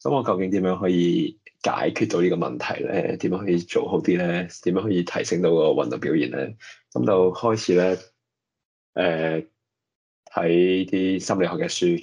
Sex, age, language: male, 20-39, Chinese